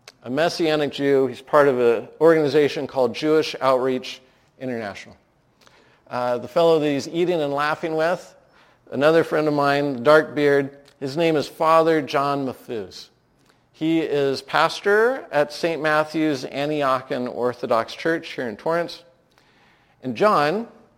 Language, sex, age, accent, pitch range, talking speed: English, male, 50-69, American, 125-160 Hz, 135 wpm